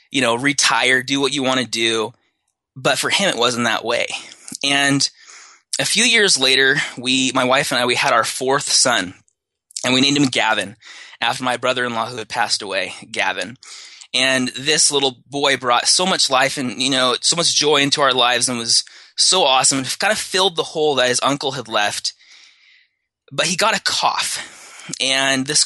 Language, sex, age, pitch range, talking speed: English, male, 20-39, 120-140 Hz, 195 wpm